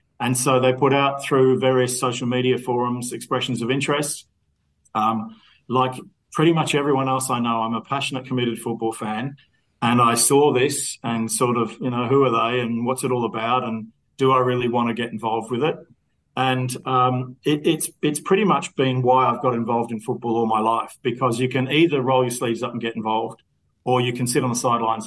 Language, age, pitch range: English, 40-59, 115-135 Hz